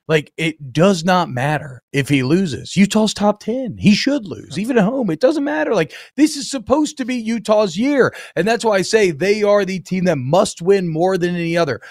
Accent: American